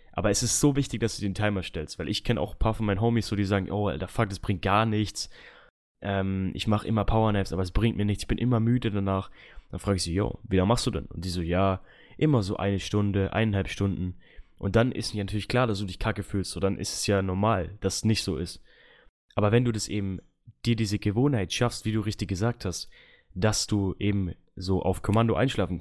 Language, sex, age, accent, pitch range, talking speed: German, male, 20-39, German, 95-115 Hz, 250 wpm